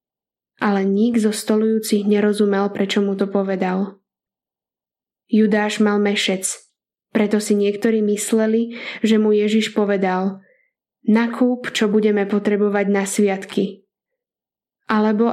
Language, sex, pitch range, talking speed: Slovak, female, 200-220 Hz, 105 wpm